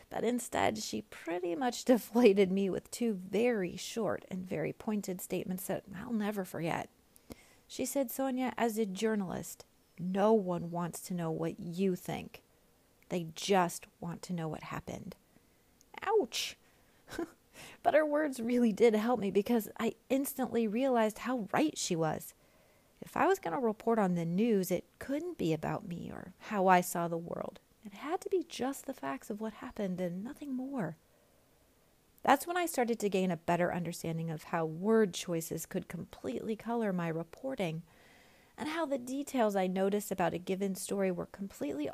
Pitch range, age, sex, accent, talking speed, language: 180-240 Hz, 30-49, female, American, 170 wpm, English